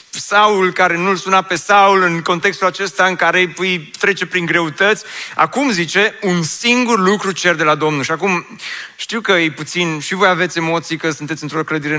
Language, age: Romanian, 30-49